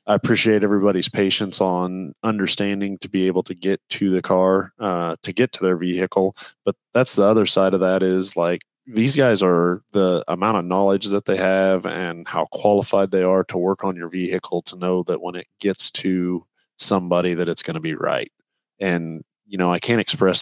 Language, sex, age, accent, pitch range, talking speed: English, male, 30-49, American, 90-100 Hz, 205 wpm